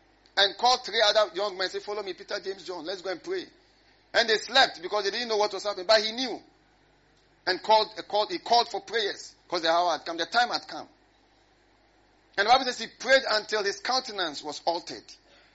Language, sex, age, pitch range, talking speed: English, male, 50-69, 200-315 Hz, 220 wpm